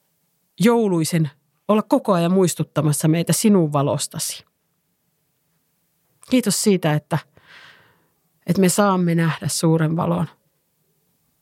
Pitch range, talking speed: 160-190 Hz, 90 wpm